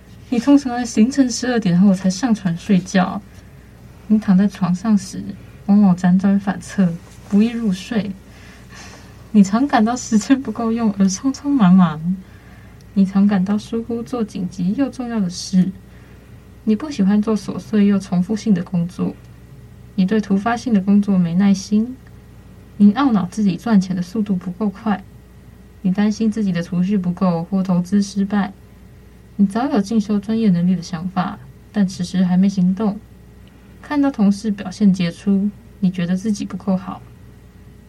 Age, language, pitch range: 20-39, Chinese, 185-220 Hz